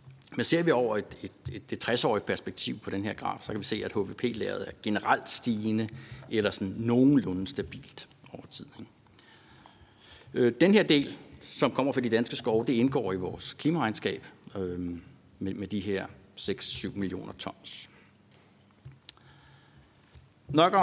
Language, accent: Danish, native